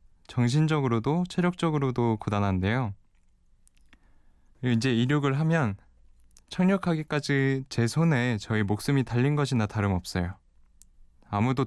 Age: 20-39